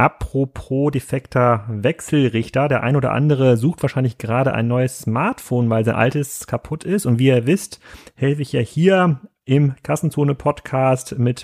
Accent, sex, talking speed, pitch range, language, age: German, male, 150 wpm, 120-145 Hz, German, 30-49